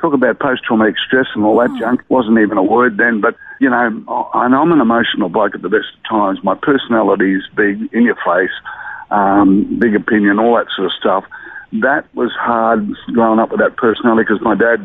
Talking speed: 215 wpm